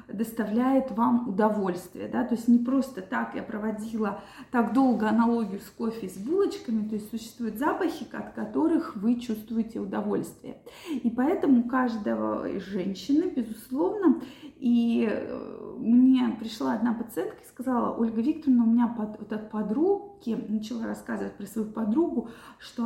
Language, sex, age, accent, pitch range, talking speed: Russian, female, 30-49, native, 225-270 Hz, 145 wpm